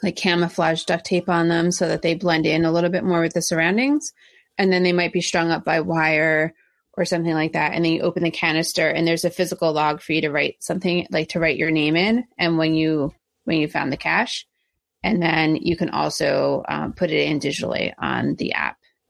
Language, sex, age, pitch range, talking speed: English, female, 30-49, 160-190 Hz, 235 wpm